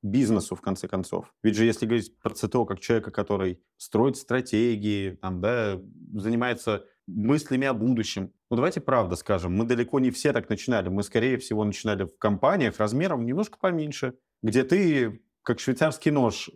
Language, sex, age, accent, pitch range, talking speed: Russian, male, 20-39, native, 105-125 Hz, 165 wpm